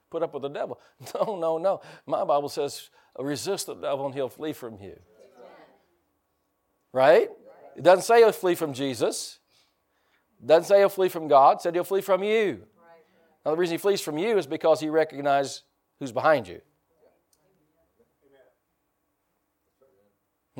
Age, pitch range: 50-69, 125-160 Hz